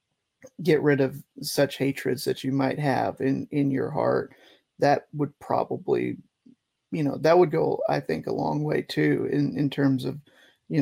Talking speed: 175 wpm